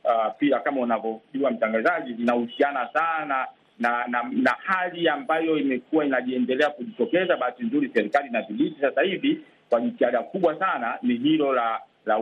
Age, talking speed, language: 50-69, 145 wpm, Swahili